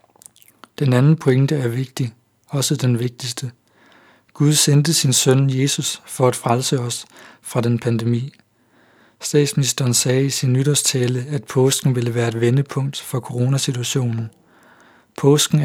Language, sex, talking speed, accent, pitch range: Danish, male, 130 wpm, native, 125-145 Hz